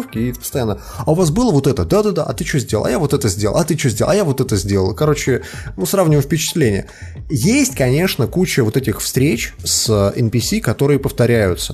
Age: 20-39